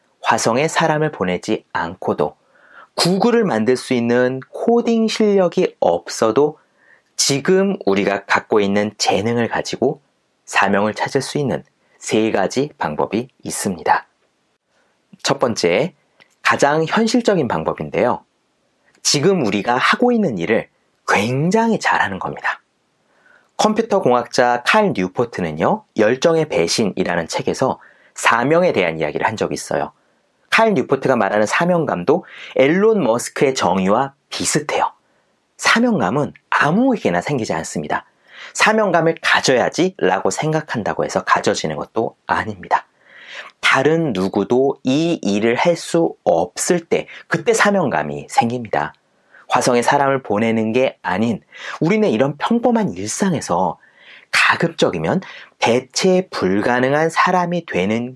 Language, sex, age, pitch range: Korean, male, 30-49, 115-195 Hz